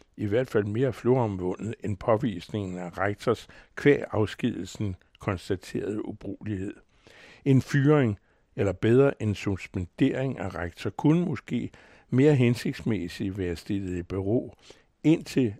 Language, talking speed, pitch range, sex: Danish, 115 wpm, 100-125 Hz, male